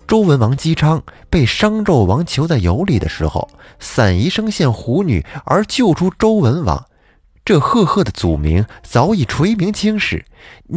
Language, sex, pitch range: Chinese, male, 85-135 Hz